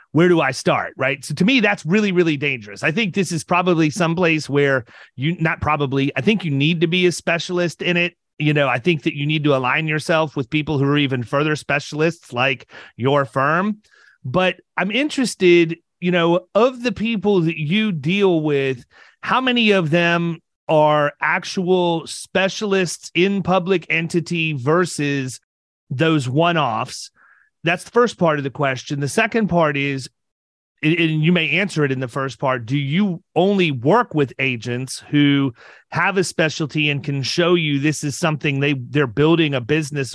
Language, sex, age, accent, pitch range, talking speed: English, male, 30-49, American, 145-180 Hz, 180 wpm